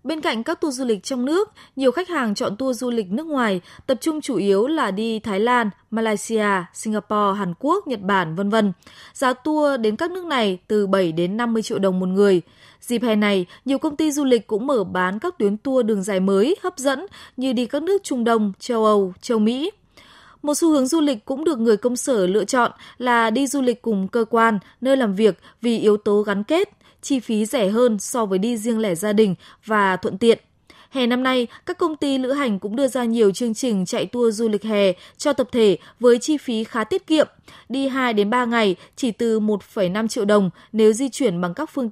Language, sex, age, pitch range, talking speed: Vietnamese, female, 20-39, 210-265 Hz, 225 wpm